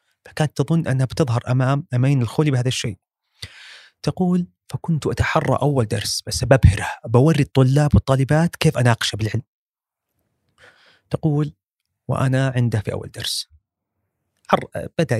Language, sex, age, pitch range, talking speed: Arabic, male, 30-49, 105-135 Hz, 115 wpm